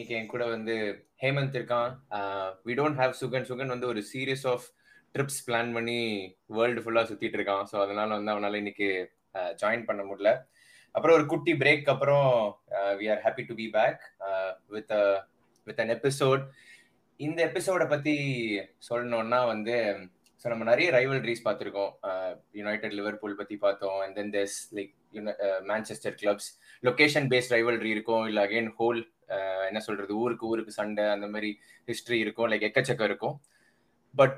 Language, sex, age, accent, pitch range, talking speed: Tamil, male, 20-39, native, 105-135 Hz, 155 wpm